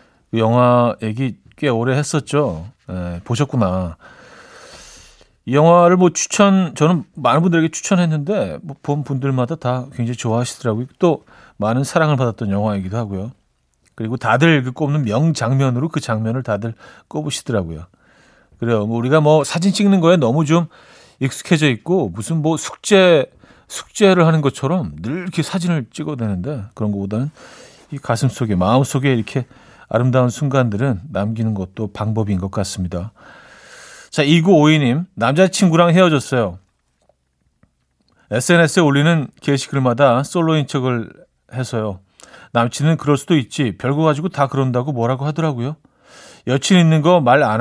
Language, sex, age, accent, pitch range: Korean, male, 40-59, native, 110-155 Hz